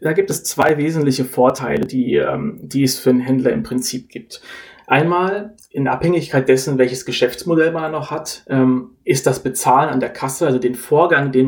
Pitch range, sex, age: 130-150 Hz, male, 30-49